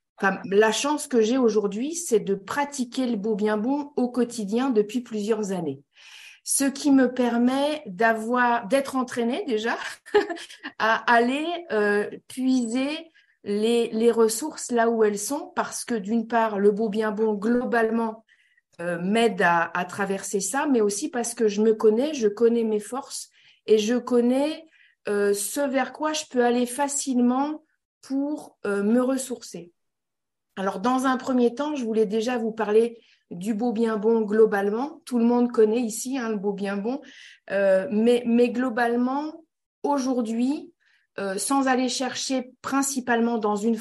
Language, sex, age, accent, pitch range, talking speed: French, female, 50-69, French, 215-260 Hz, 160 wpm